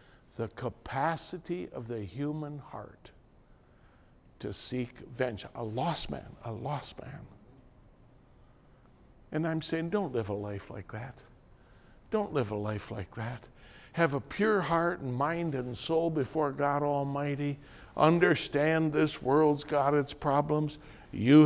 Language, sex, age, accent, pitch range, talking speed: English, male, 60-79, American, 130-190 Hz, 135 wpm